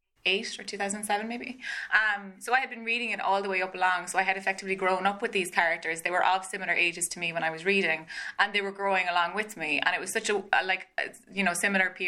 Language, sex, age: English, female, 20-39